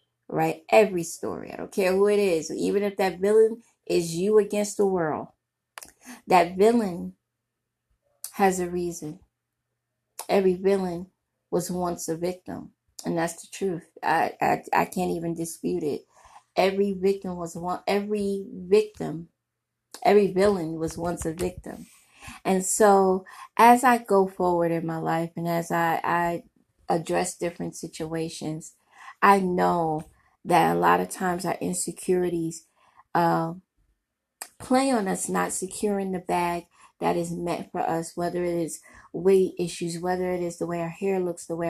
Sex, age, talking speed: female, 20-39, 150 wpm